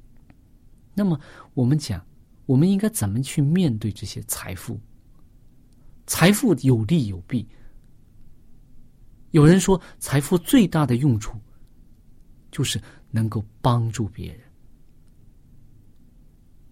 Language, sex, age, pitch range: Chinese, male, 50-69, 115-155 Hz